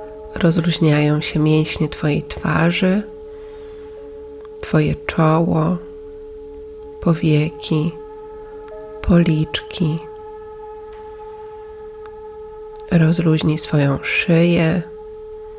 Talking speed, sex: 45 wpm, female